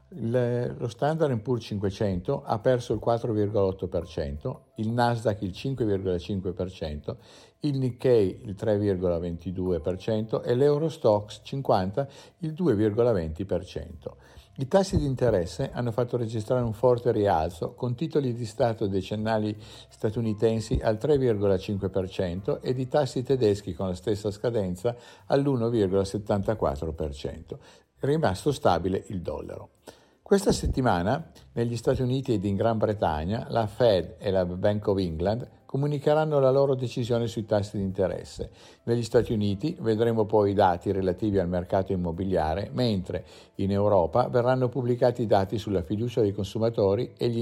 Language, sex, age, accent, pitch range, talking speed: Italian, male, 50-69, native, 100-130 Hz, 130 wpm